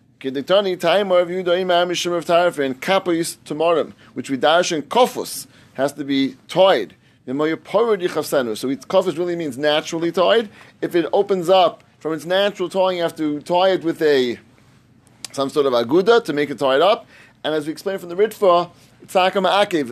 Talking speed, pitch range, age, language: 150 wpm, 150-180 Hz, 30-49, English